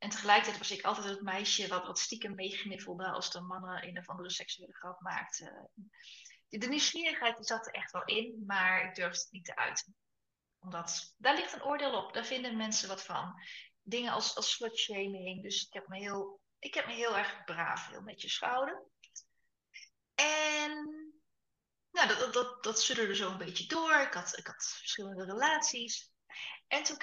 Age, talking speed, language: 20-39, 185 wpm, Dutch